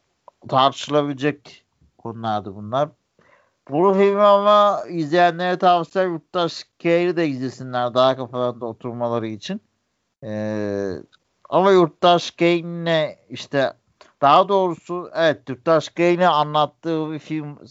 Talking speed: 105 wpm